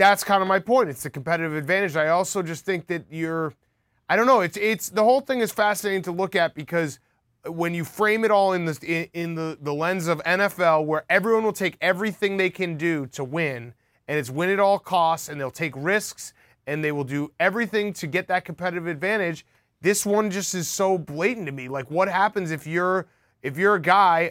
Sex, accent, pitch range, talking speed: male, American, 145-190 Hz, 220 wpm